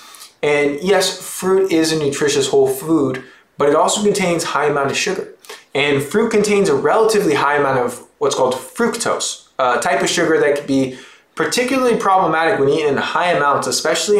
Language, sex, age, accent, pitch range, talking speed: English, male, 20-39, American, 140-230 Hz, 180 wpm